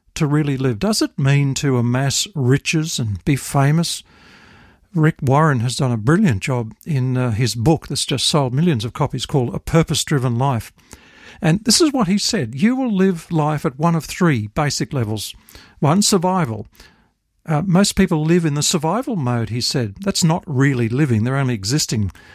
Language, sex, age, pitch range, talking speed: English, male, 50-69, 125-165 Hz, 185 wpm